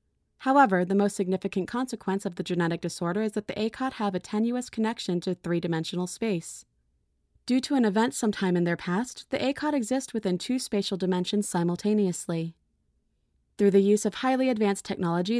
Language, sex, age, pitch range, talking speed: English, female, 30-49, 175-225 Hz, 170 wpm